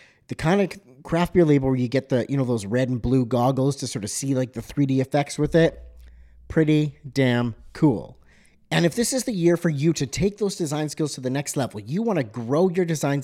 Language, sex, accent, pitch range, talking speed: English, male, American, 120-160 Hz, 240 wpm